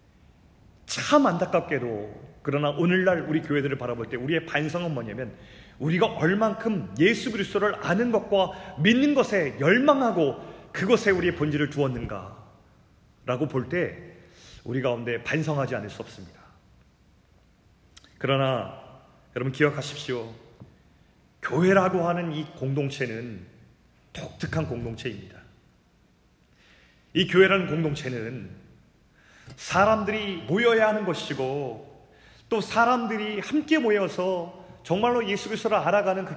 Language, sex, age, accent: Korean, male, 30-49, native